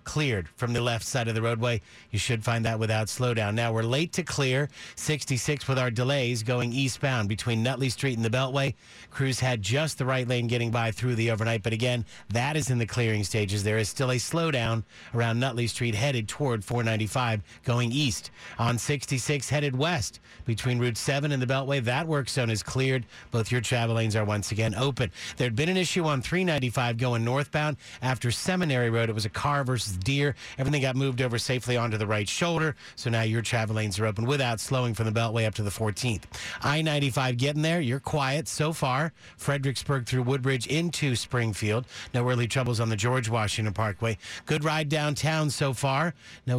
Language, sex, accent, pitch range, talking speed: English, male, American, 115-140 Hz, 200 wpm